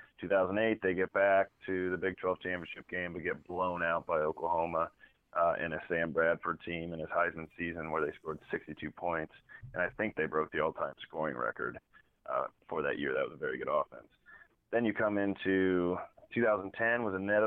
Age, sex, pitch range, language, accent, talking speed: 30-49, male, 85-100 Hz, English, American, 190 wpm